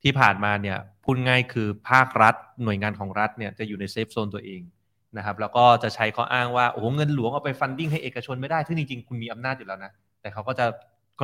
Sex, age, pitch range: male, 20-39, 105-130 Hz